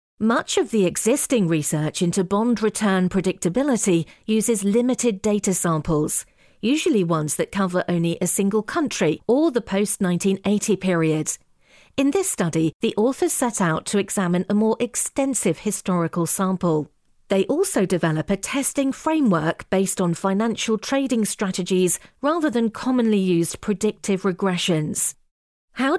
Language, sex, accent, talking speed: English, female, British, 130 wpm